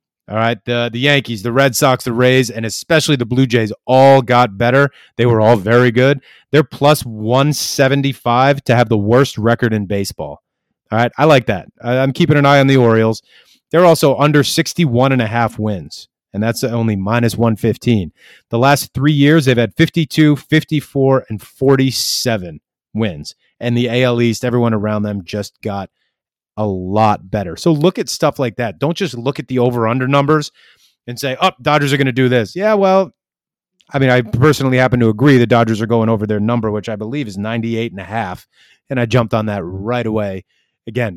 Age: 30-49